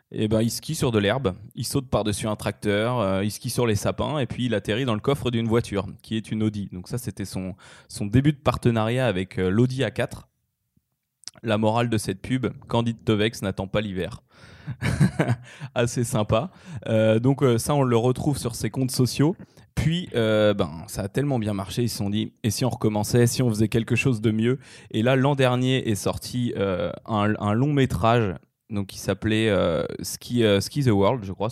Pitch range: 105-125 Hz